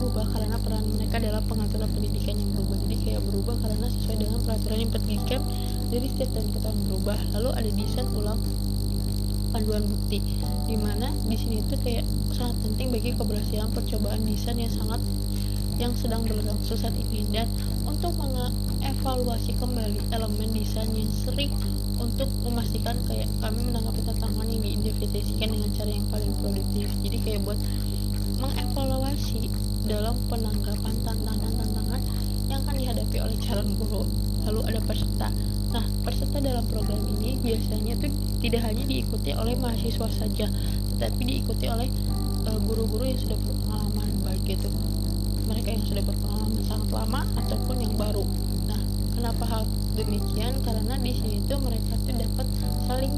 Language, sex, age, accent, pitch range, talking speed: Indonesian, female, 20-39, native, 100-105 Hz, 145 wpm